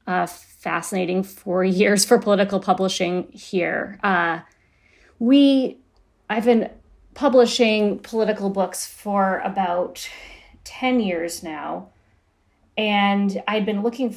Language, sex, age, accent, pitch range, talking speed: English, female, 30-49, American, 175-215 Hz, 100 wpm